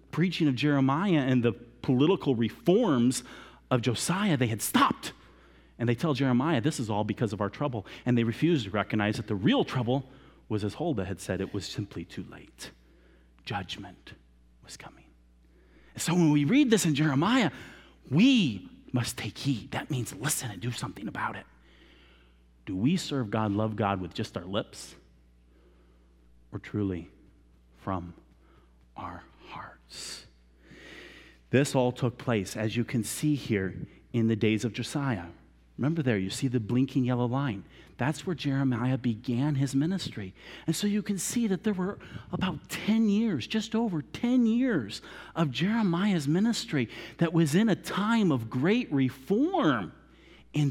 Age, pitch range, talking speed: 30-49, 100-150 Hz, 155 wpm